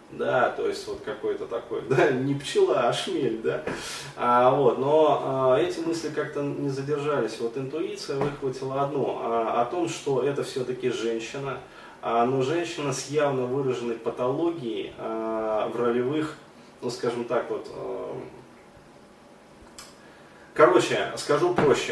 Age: 20-39